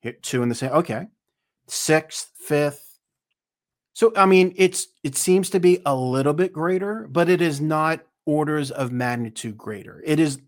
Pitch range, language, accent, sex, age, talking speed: 130-175 Hz, English, American, male, 40-59, 165 wpm